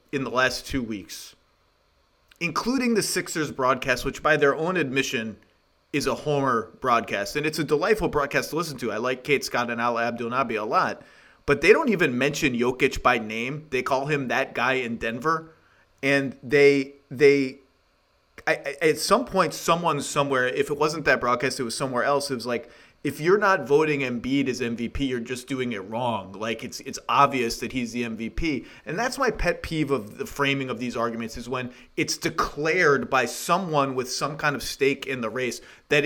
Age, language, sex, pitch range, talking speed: 30-49, English, male, 125-150 Hz, 195 wpm